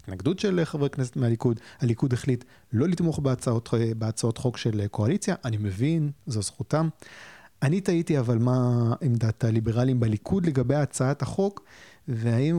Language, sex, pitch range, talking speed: Hebrew, male, 115-145 Hz, 140 wpm